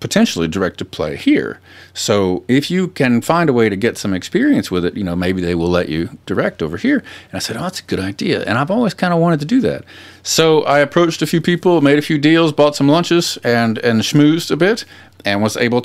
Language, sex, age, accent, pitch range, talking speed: English, male, 40-59, American, 115-180 Hz, 250 wpm